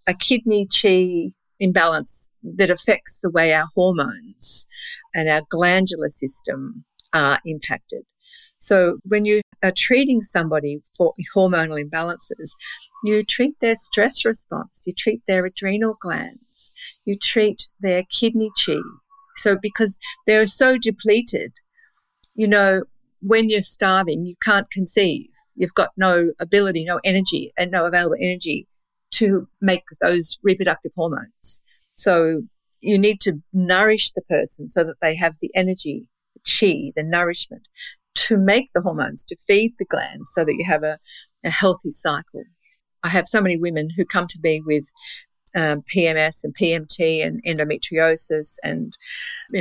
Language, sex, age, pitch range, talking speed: English, female, 50-69, 165-215 Hz, 145 wpm